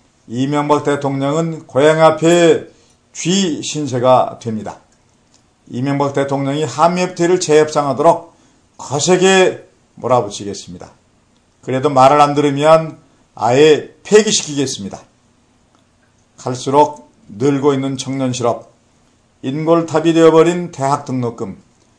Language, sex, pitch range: Korean, male, 125-160 Hz